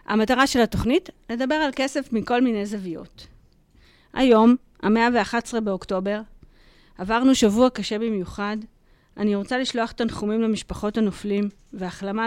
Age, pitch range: 30-49, 205-260 Hz